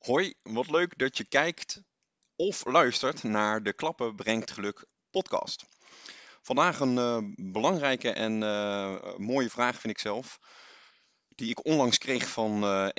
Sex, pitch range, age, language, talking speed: male, 100-125 Hz, 30-49, Dutch, 145 wpm